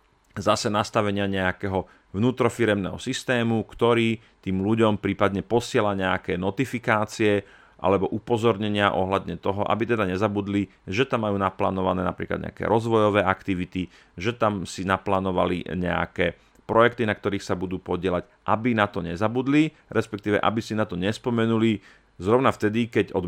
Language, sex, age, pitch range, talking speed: Slovak, male, 40-59, 95-110 Hz, 135 wpm